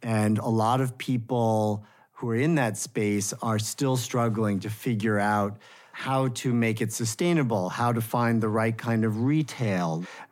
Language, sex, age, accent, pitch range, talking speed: English, male, 50-69, American, 115-135 Hz, 175 wpm